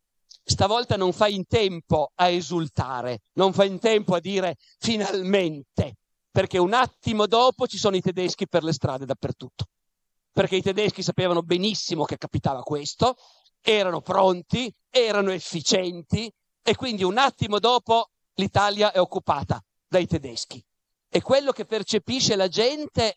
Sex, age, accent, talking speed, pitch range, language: male, 50-69, native, 140 wpm, 135-195 Hz, Italian